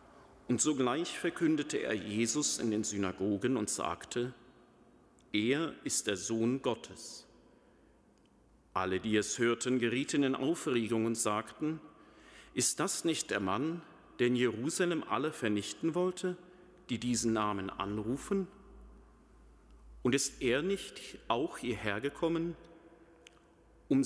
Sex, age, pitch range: male, 40-59, 105-140 Hz